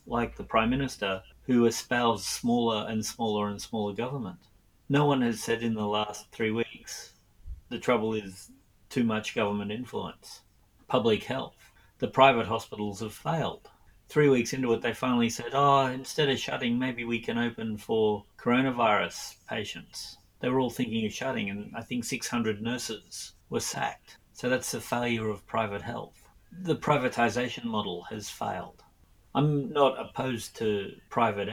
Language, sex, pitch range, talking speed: English, male, 105-125 Hz, 160 wpm